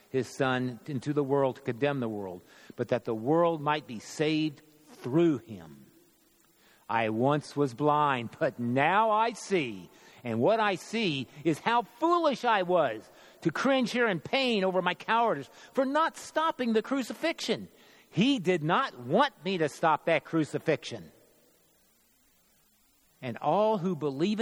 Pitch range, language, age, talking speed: 140-210 Hz, English, 50-69, 150 wpm